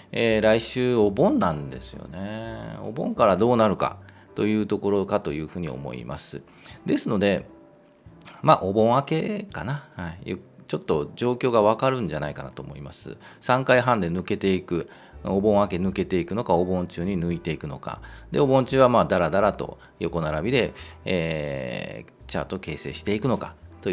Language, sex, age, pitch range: Japanese, male, 40-59, 85-115 Hz